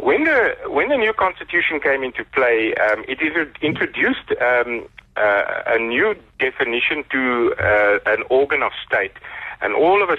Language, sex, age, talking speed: English, male, 40-59, 160 wpm